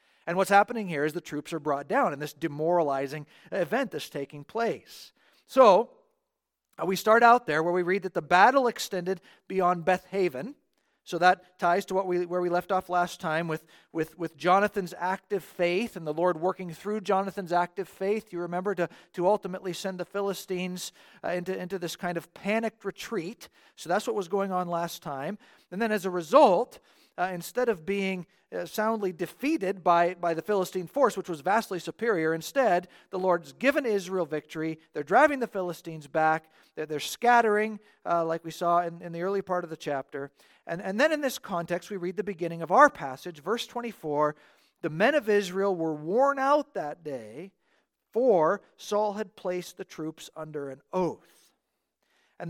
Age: 40-59